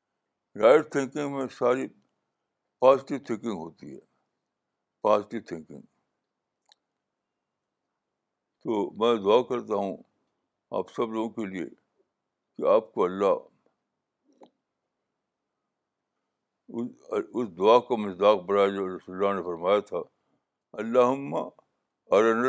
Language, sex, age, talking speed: Urdu, male, 60-79, 100 wpm